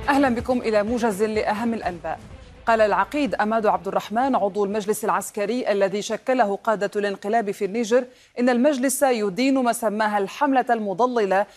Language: Arabic